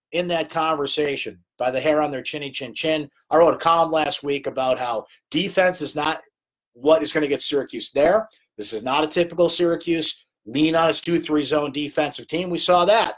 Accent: American